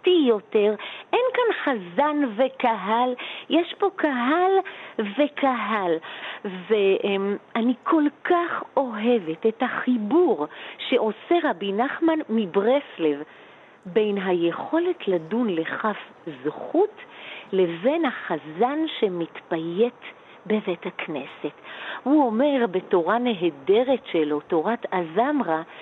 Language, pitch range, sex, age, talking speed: Hebrew, 200-320 Hz, female, 50-69, 85 wpm